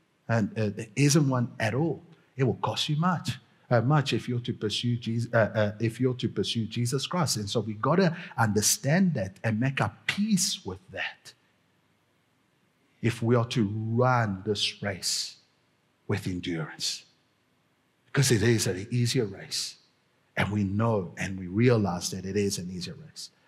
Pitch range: 110-125 Hz